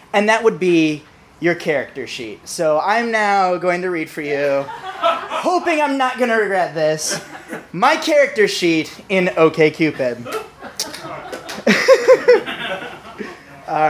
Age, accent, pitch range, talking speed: 20-39, American, 175-275 Hz, 120 wpm